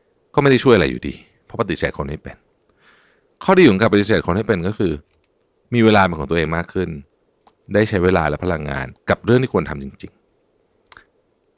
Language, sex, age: Thai, male, 60-79